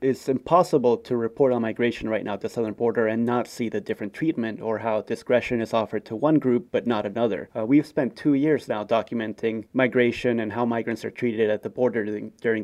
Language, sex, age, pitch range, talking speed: English, male, 30-49, 110-135 Hz, 220 wpm